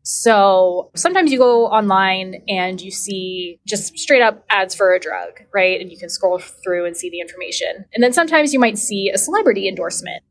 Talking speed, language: 200 wpm, English